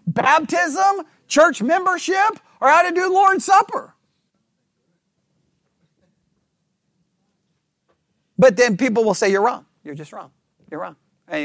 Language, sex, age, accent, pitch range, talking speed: English, male, 40-59, American, 185-250 Hz, 115 wpm